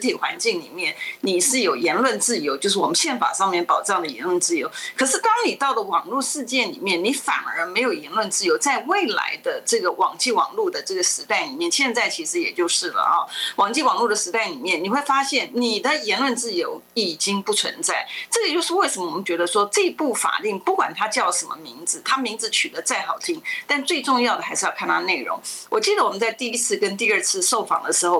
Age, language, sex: 30-49, Chinese, female